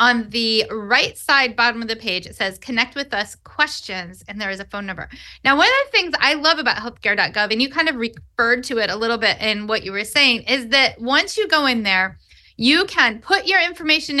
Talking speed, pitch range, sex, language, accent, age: 235 wpm, 230-310 Hz, female, English, American, 30-49